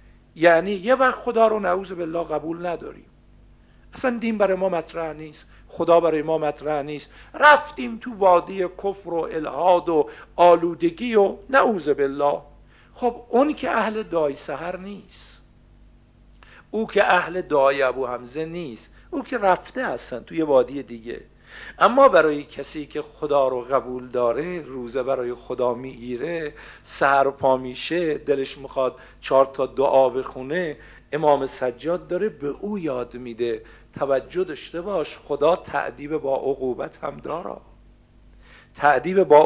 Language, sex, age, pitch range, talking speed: Persian, male, 50-69, 135-185 Hz, 140 wpm